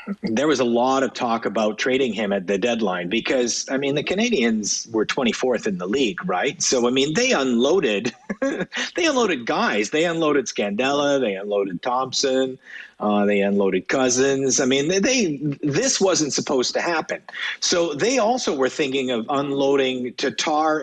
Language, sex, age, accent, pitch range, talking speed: English, male, 50-69, American, 115-150 Hz, 165 wpm